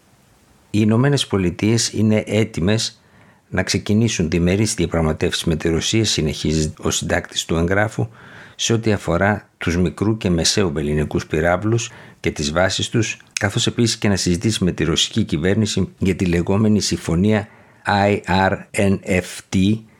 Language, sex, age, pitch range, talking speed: Greek, male, 60-79, 85-105 Hz, 135 wpm